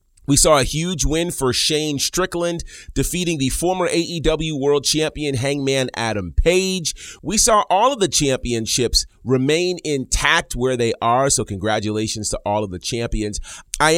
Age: 30-49